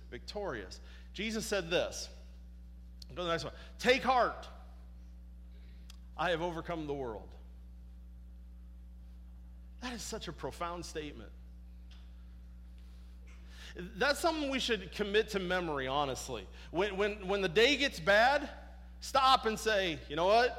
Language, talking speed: English, 120 wpm